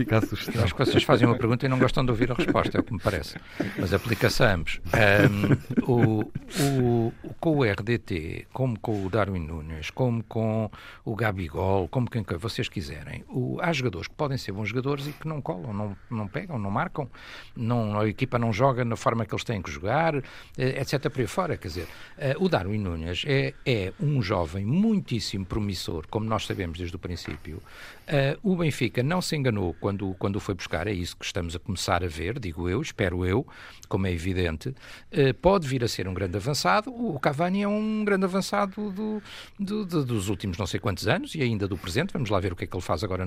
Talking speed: 205 wpm